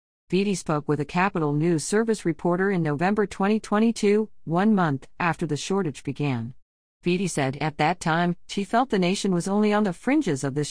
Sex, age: female, 50-69